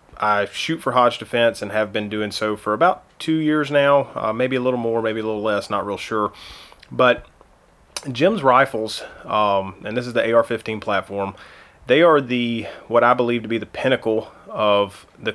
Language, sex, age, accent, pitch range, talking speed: English, male, 30-49, American, 105-115 Hz, 190 wpm